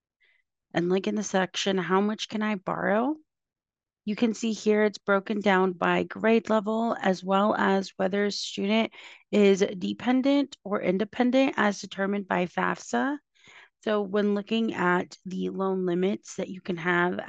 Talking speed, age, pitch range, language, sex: 155 wpm, 30-49, 170-205 Hz, English, female